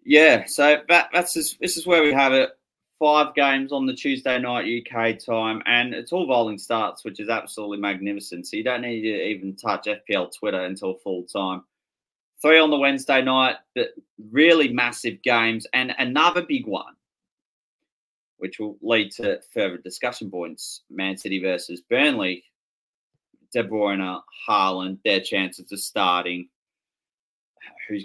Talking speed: 155 wpm